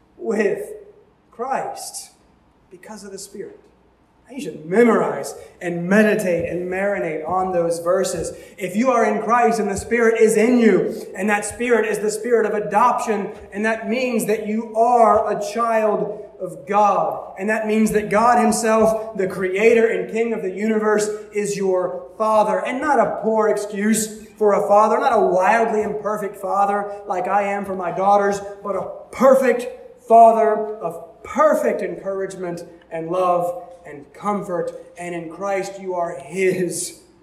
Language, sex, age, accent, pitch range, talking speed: English, male, 20-39, American, 195-250 Hz, 155 wpm